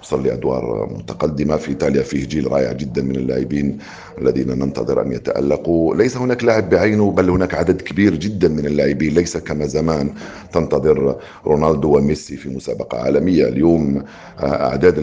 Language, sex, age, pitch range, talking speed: Arabic, male, 50-69, 65-80 Hz, 150 wpm